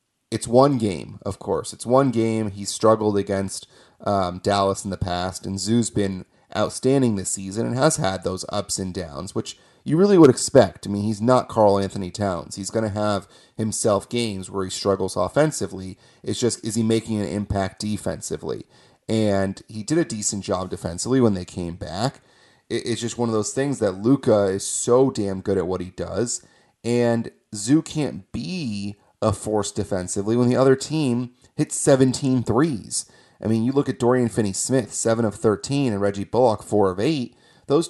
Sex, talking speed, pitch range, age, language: male, 190 wpm, 95-120 Hz, 30-49, English